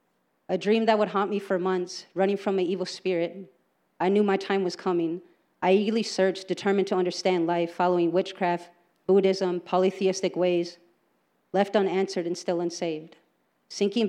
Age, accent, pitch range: 30-49, American, 175-195 Hz